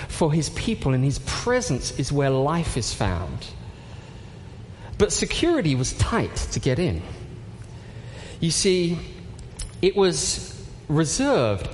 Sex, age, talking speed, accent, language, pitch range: male, 40-59, 120 wpm, British, English, 115-185 Hz